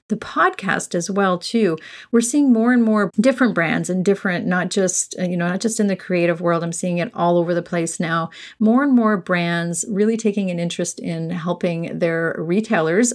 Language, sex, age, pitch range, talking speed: English, female, 40-59, 180-220 Hz, 200 wpm